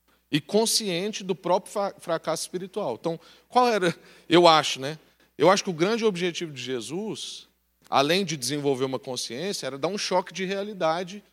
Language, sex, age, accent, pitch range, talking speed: Portuguese, male, 40-59, Brazilian, 105-180 Hz, 165 wpm